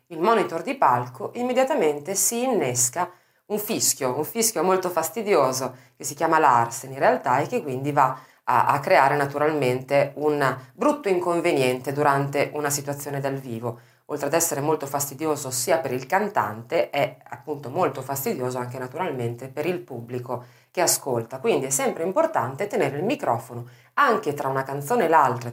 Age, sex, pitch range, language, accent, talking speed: 30-49, female, 130-180 Hz, Italian, native, 160 wpm